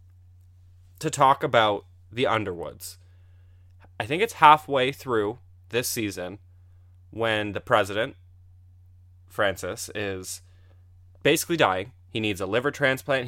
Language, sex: English, male